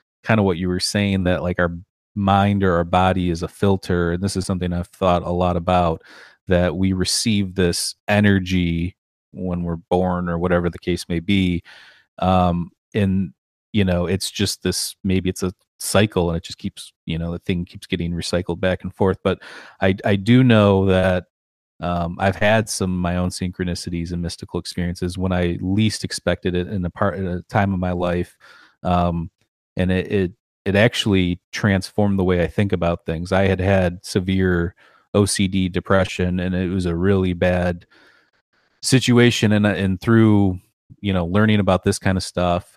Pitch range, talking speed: 90-100 Hz, 185 wpm